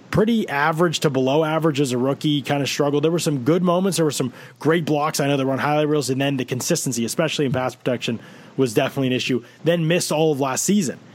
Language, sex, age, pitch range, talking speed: English, male, 20-39, 130-155 Hz, 240 wpm